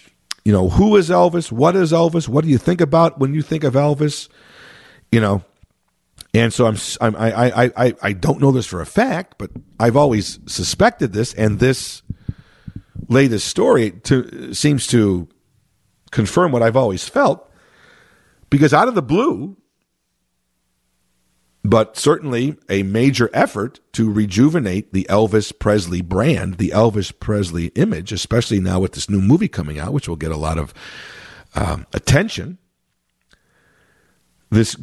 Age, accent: 50-69, American